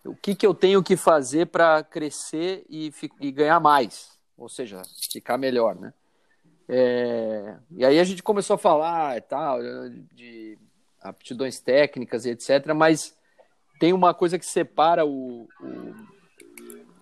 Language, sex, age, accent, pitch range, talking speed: Portuguese, male, 40-59, Brazilian, 125-155 Hz, 145 wpm